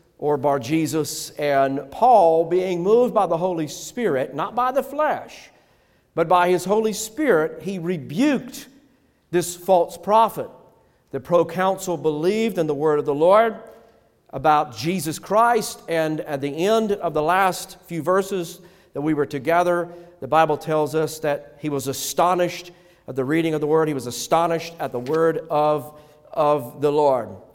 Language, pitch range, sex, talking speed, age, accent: English, 150-200 Hz, male, 160 wpm, 50-69, American